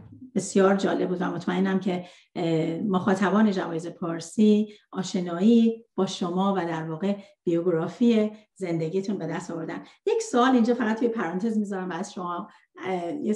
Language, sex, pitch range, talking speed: Persian, female, 185-235 Hz, 130 wpm